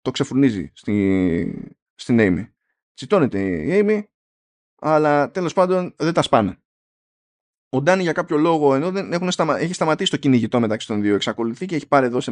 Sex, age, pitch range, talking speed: male, 20-39, 120-175 Hz, 165 wpm